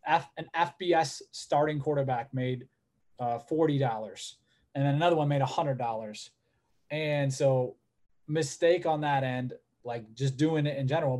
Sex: male